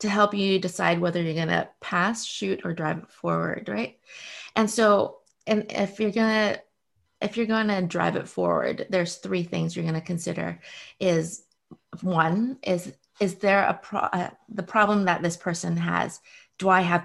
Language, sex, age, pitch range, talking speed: English, female, 30-49, 170-210 Hz, 175 wpm